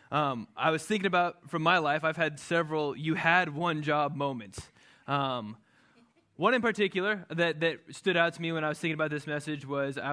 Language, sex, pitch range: English, male, 150-185 Hz